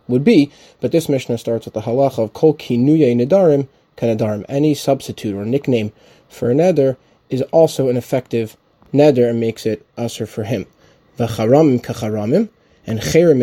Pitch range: 115-140 Hz